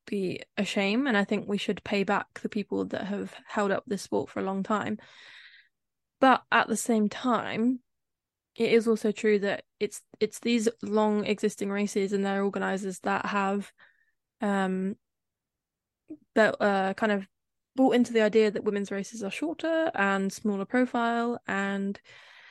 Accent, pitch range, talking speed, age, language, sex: British, 200-230 Hz, 165 wpm, 10-29, English, female